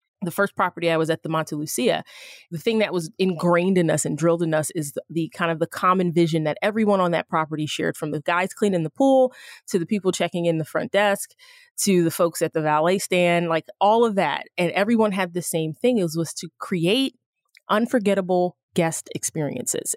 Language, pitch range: English, 165-200 Hz